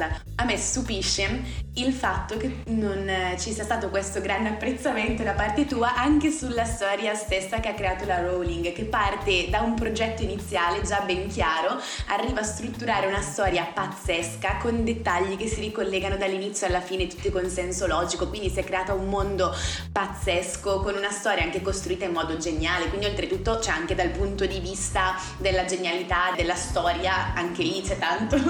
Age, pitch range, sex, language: 20-39, 185-230 Hz, female, Italian